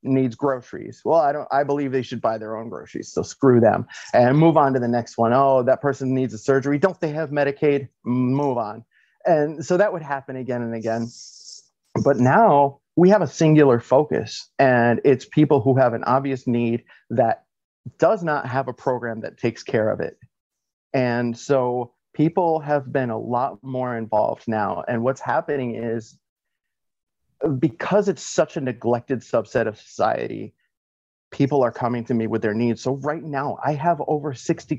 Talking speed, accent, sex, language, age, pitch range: 185 wpm, American, male, English, 30-49, 120-145 Hz